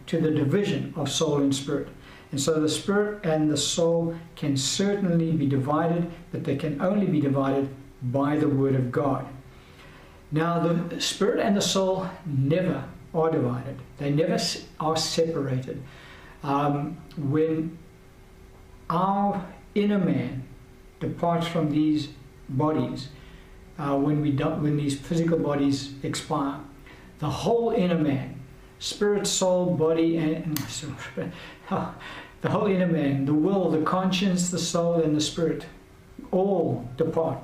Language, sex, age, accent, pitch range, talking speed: English, male, 60-79, American, 135-165 Hz, 130 wpm